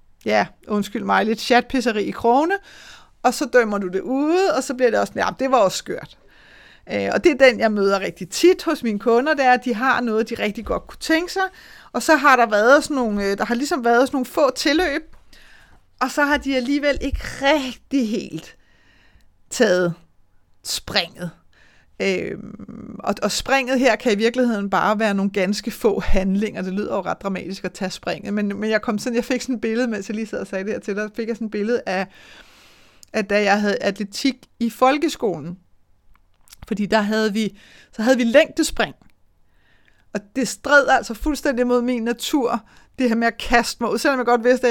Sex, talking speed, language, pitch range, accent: female, 205 wpm, Danish, 210-265 Hz, native